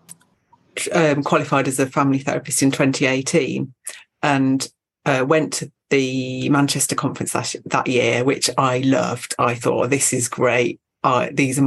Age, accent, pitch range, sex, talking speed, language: 40-59, British, 135-160 Hz, female, 140 wpm, English